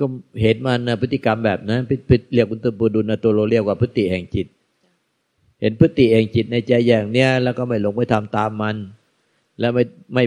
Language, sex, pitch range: Thai, male, 105-120 Hz